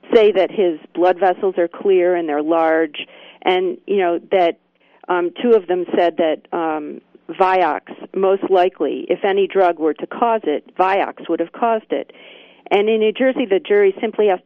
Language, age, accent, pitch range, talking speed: English, 50-69, American, 175-235 Hz, 185 wpm